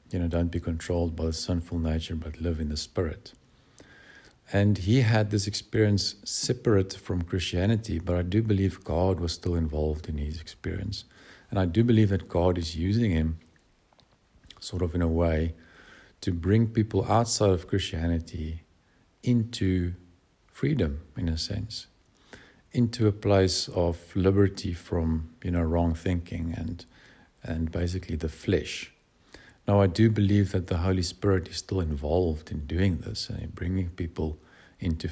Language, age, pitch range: English, 50-69, 85-105 Hz